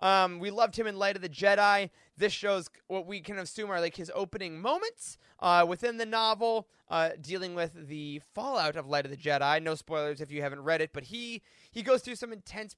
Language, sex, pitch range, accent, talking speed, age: English, male, 165-230 Hz, American, 225 wpm, 20-39